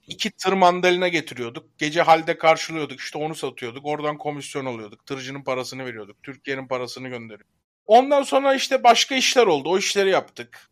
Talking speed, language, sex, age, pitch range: 150 wpm, Turkish, male, 30-49, 150-205 Hz